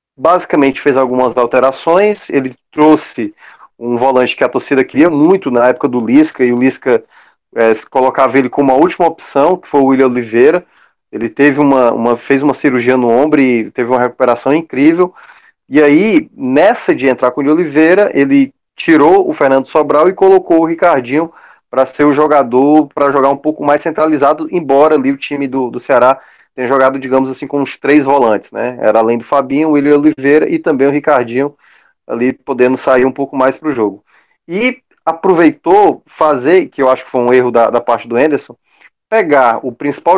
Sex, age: male, 20-39